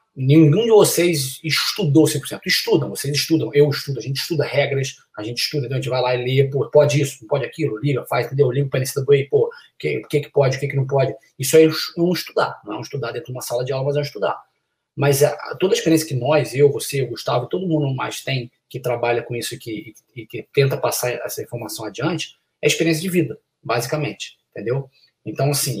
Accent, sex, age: Brazilian, male, 20-39